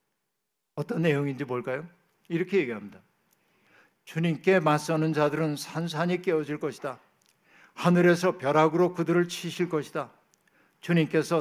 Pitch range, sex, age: 150-175 Hz, male, 60-79